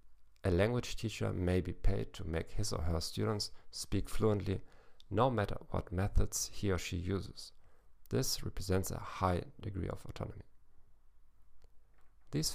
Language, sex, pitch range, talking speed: English, male, 90-120 Hz, 145 wpm